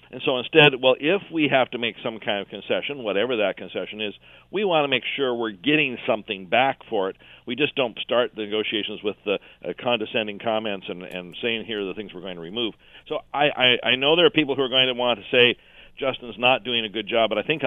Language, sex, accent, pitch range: English, male, American, 110-140 Hz